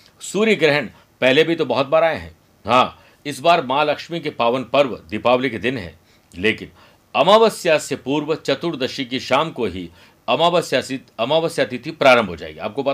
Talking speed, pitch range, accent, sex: 175 wpm, 120-165 Hz, native, male